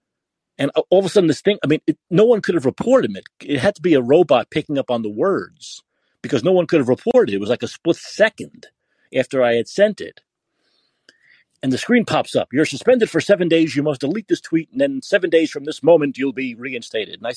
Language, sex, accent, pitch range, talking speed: English, male, American, 140-200 Hz, 250 wpm